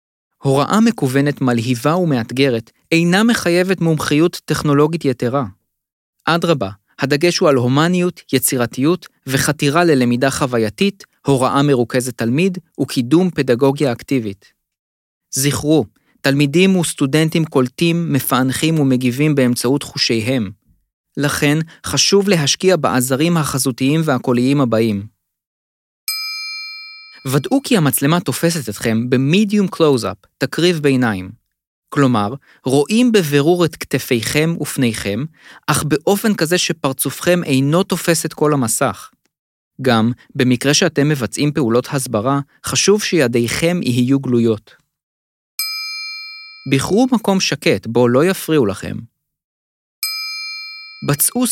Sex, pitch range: male, 125-170 Hz